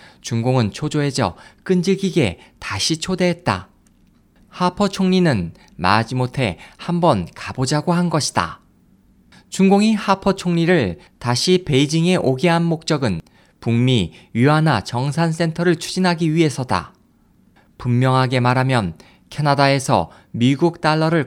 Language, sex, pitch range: Korean, male, 120-175 Hz